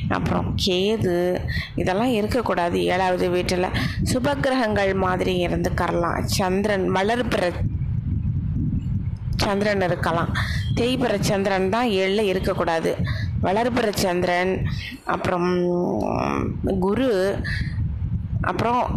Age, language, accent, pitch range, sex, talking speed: 20-39, Tamil, native, 175-215 Hz, female, 75 wpm